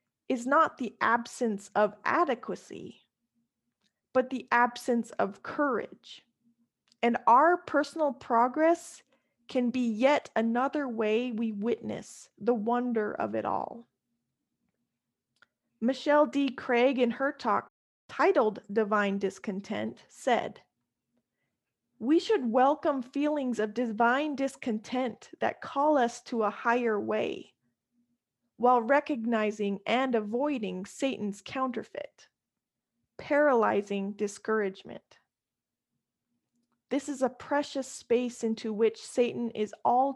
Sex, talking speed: female, 105 wpm